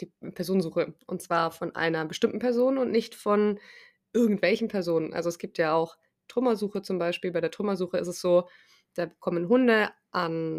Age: 20-39